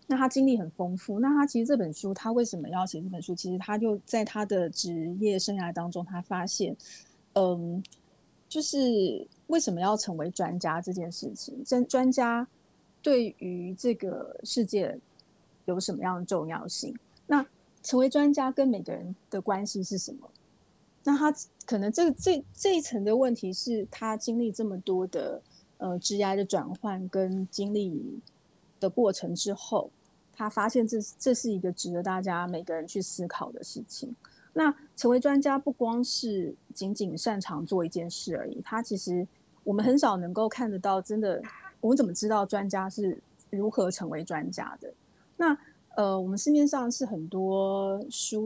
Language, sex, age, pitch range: Chinese, female, 30-49, 185-240 Hz